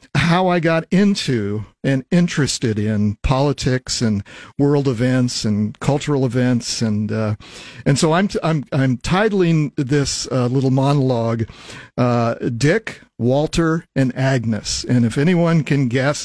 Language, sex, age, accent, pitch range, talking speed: English, male, 50-69, American, 120-165 Hz, 135 wpm